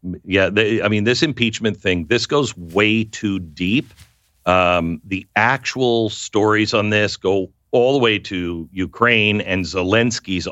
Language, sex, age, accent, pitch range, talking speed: English, male, 50-69, American, 95-140 Hz, 150 wpm